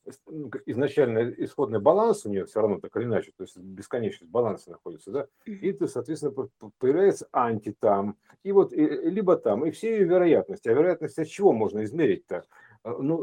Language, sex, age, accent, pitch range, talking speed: Russian, male, 50-69, native, 120-200 Hz, 170 wpm